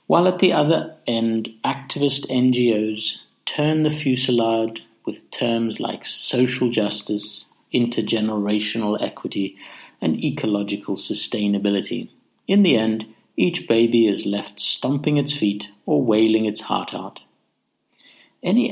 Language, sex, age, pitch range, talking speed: English, male, 60-79, 105-140 Hz, 115 wpm